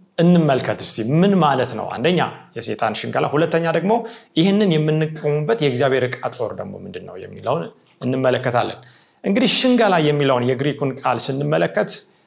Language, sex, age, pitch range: Amharic, male, 40-59, 135-190 Hz